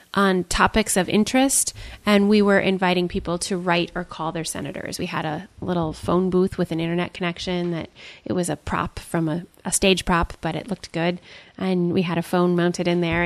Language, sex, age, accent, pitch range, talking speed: English, female, 20-39, American, 175-205 Hz, 215 wpm